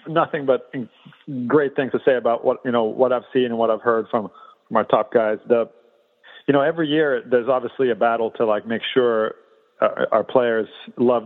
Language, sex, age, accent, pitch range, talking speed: English, male, 40-59, American, 115-135 Hz, 210 wpm